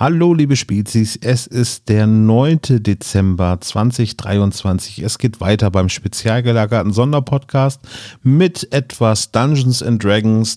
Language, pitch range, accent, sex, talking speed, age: German, 105-125 Hz, German, male, 115 wpm, 40-59